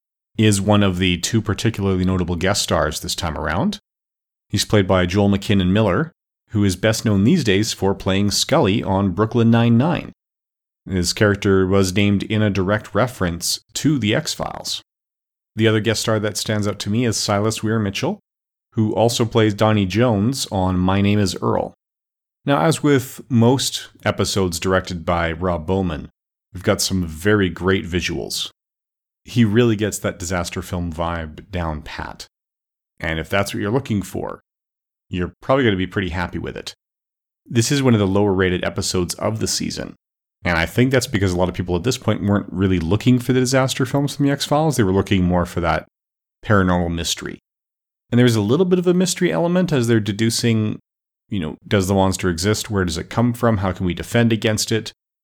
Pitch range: 90-115 Hz